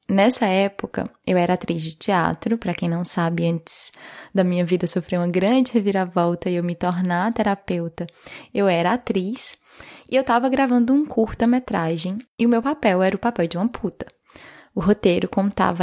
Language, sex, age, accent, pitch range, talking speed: Portuguese, female, 10-29, Brazilian, 185-235 Hz, 175 wpm